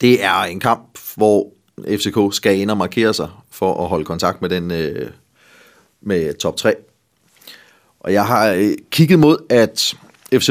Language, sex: Danish, male